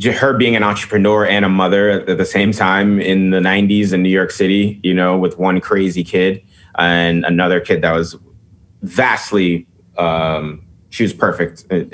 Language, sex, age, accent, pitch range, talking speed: English, male, 30-49, American, 90-105 Hz, 170 wpm